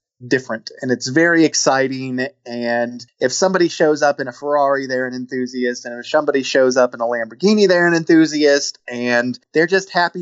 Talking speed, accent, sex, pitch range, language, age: 180 wpm, American, male, 125-155 Hz, English, 30-49